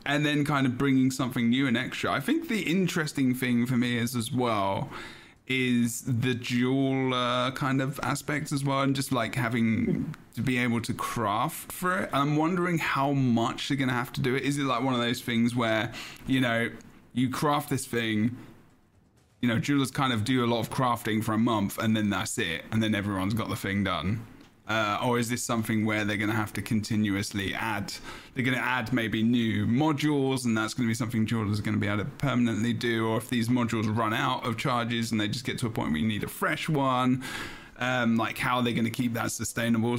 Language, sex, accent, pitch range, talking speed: English, male, British, 110-130 Hz, 230 wpm